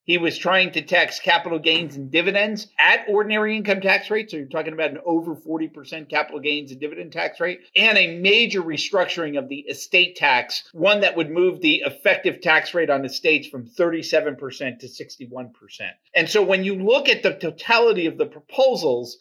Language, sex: English, male